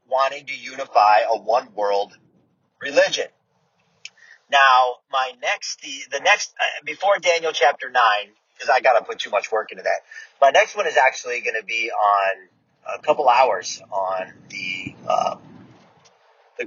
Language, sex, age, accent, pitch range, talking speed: English, male, 30-49, American, 130-200 Hz, 155 wpm